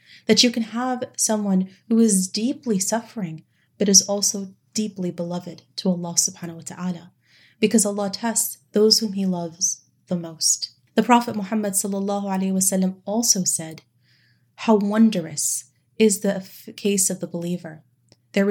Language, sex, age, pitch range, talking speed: English, female, 30-49, 175-215 Hz, 145 wpm